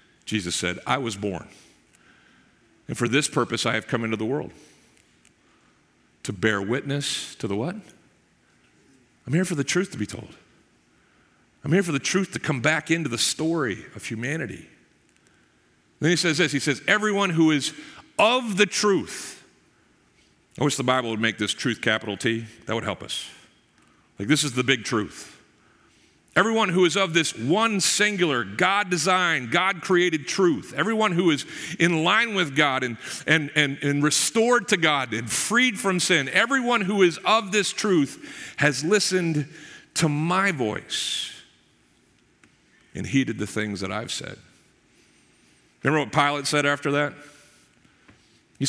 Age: 50-69